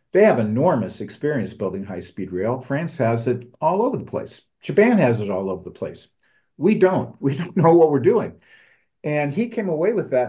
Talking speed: 205 wpm